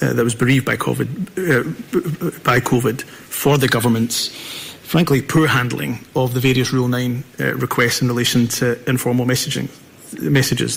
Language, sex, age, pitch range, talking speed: English, male, 30-49, 120-135 Hz, 155 wpm